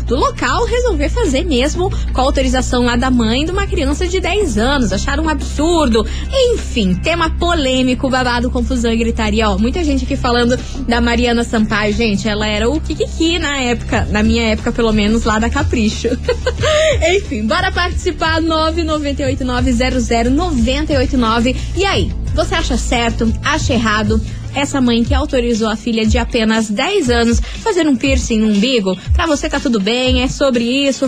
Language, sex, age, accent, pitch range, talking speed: Portuguese, female, 20-39, Brazilian, 225-295 Hz, 160 wpm